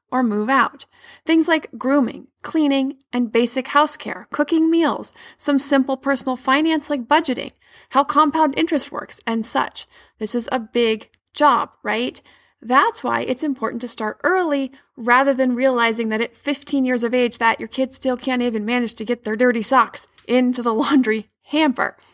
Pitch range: 230-290 Hz